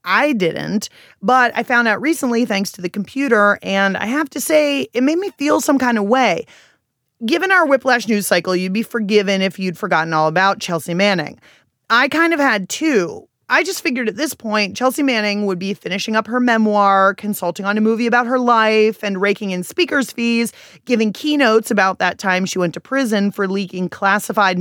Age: 30-49